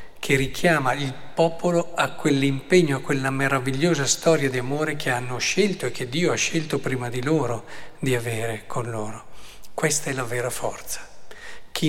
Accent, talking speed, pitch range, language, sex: native, 165 wpm, 130-175 Hz, Italian, male